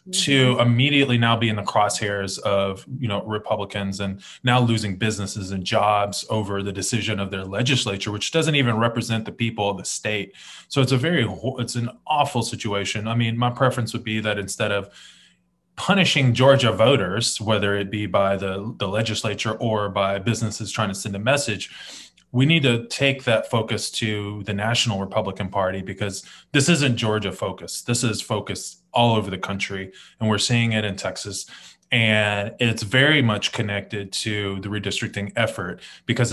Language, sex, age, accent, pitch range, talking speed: English, male, 20-39, American, 100-120 Hz, 175 wpm